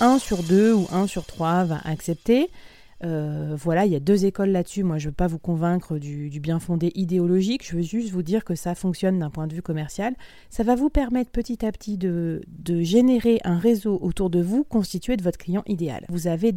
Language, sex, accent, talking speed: French, female, French, 230 wpm